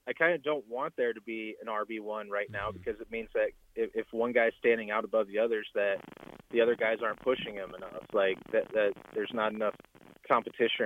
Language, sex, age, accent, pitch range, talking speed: English, male, 30-49, American, 110-150 Hz, 220 wpm